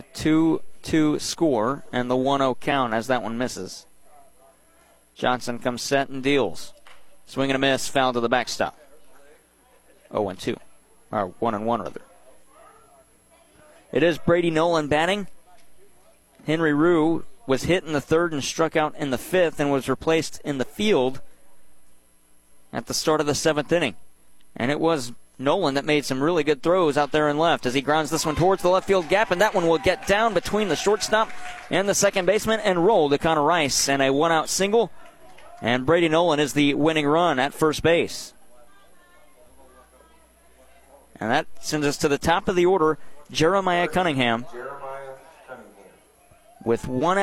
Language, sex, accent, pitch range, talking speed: English, male, American, 130-170 Hz, 165 wpm